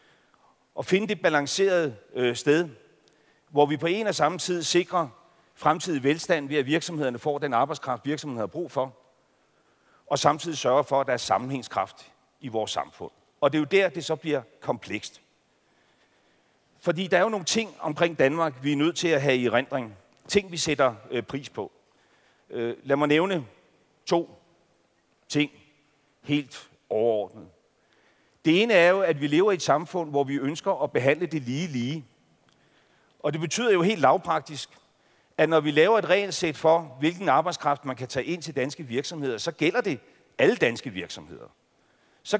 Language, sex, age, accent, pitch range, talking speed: Danish, male, 40-59, native, 135-175 Hz, 170 wpm